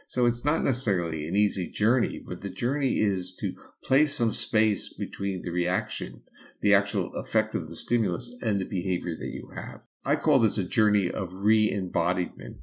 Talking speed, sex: 175 wpm, male